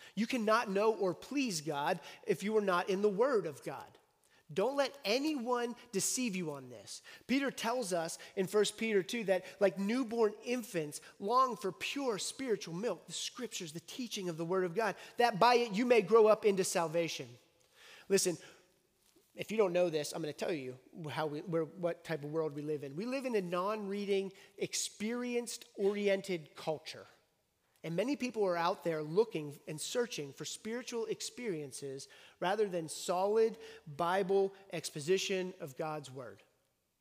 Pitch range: 160-225 Hz